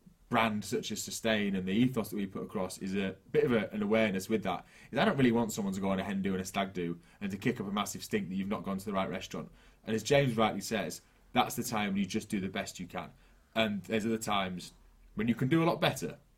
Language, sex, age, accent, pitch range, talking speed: English, male, 30-49, British, 100-135 Hz, 285 wpm